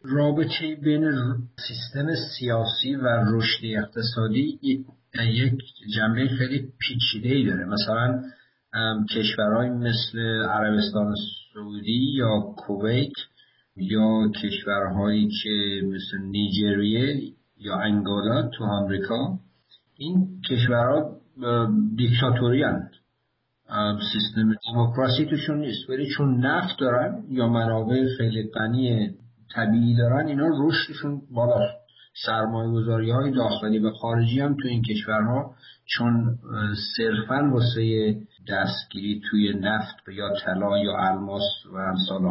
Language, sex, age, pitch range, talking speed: Persian, male, 50-69, 105-130 Hz, 95 wpm